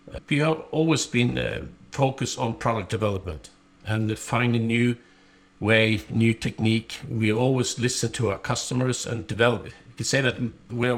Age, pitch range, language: 60-79, 105-125 Hz, English